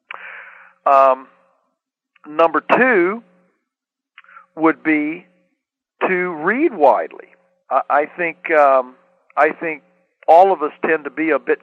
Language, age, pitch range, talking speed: English, 50-69, 130-180 Hz, 115 wpm